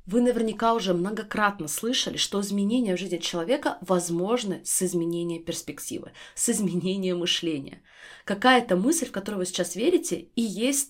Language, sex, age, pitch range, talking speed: Russian, female, 20-39, 175-230 Hz, 145 wpm